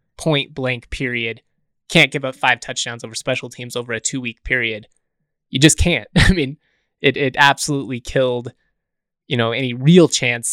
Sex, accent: male, American